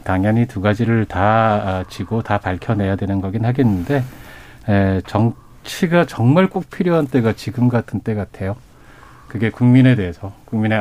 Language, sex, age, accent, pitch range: Korean, male, 40-59, native, 100-130 Hz